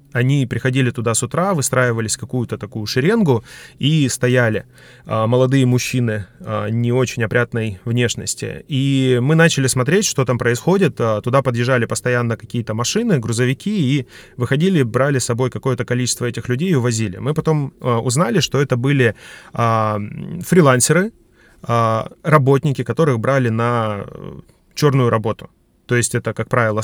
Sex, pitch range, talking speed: male, 115-140 Hz, 130 wpm